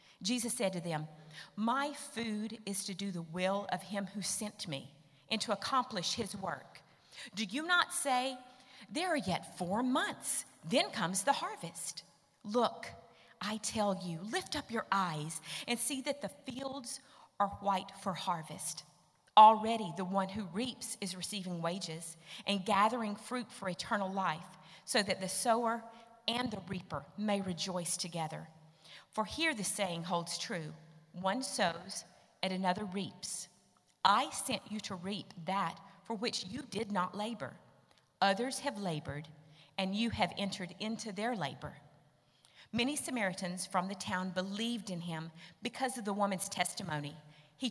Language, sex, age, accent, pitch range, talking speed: English, female, 40-59, American, 175-230 Hz, 155 wpm